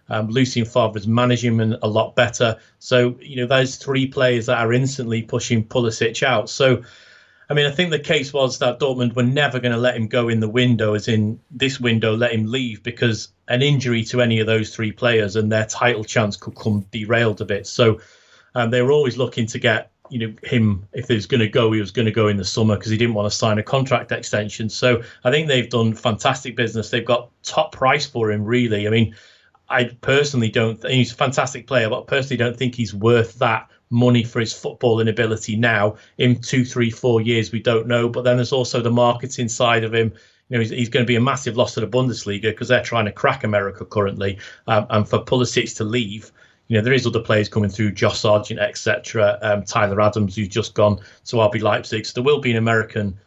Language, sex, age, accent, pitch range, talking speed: English, male, 30-49, British, 110-125 Hz, 235 wpm